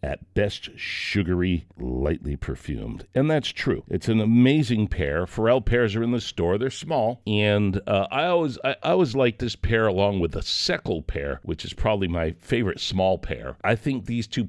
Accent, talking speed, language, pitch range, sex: American, 190 wpm, English, 85-115 Hz, male